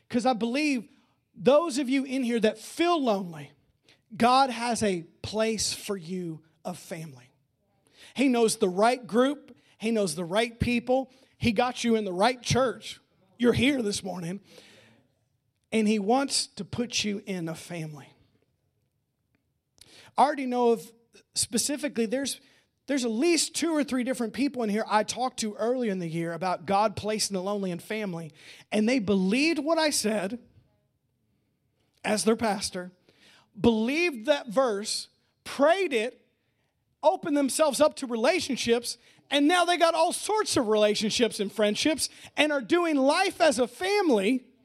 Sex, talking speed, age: male, 155 wpm, 40-59